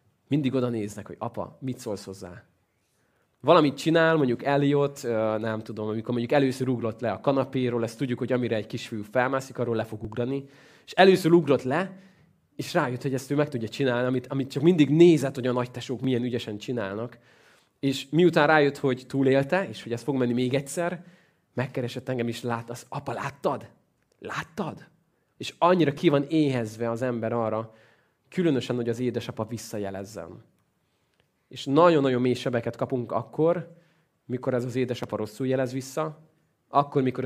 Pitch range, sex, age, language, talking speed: 115-140 Hz, male, 20-39, Hungarian, 165 wpm